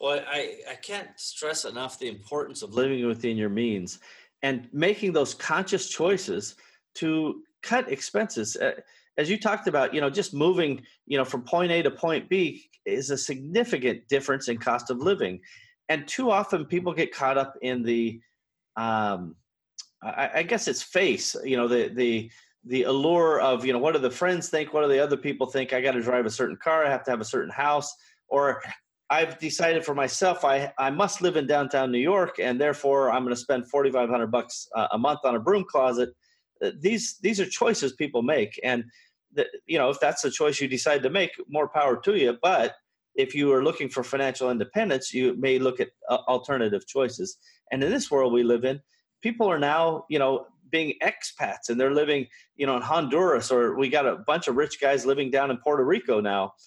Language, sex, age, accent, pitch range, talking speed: English, male, 30-49, American, 125-175 Hz, 205 wpm